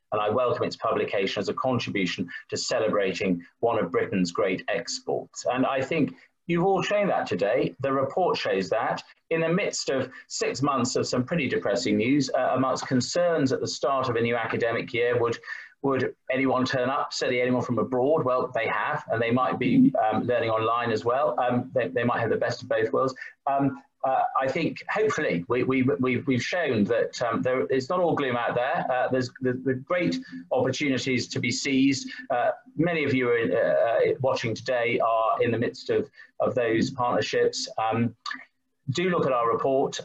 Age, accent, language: 40-59, British, English